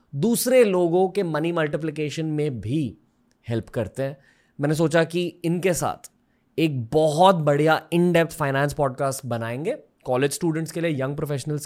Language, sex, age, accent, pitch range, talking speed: Hindi, male, 20-39, native, 120-165 Hz, 145 wpm